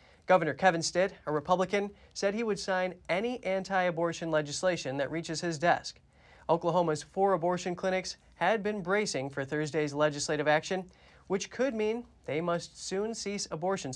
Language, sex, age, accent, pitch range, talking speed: English, male, 30-49, American, 145-185 Hz, 150 wpm